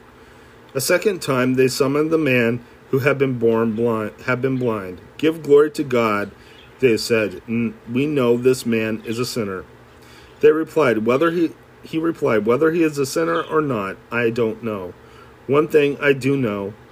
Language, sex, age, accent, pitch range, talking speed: English, male, 40-59, American, 115-150 Hz, 175 wpm